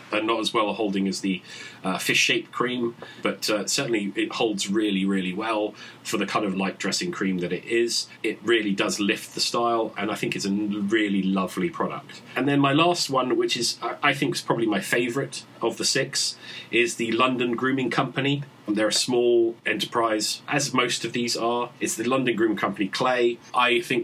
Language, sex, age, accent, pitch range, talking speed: English, male, 30-49, British, 100-125 Hz, 200 wpm